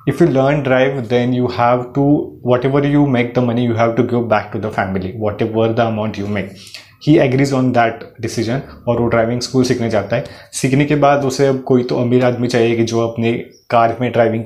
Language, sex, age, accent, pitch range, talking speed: English, male, 30-49, Indian, 115-135 Hz, 225 wpm